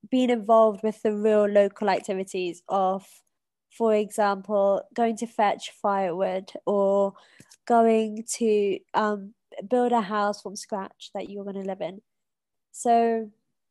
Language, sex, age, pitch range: English, female, 20-39, 200-225 Hz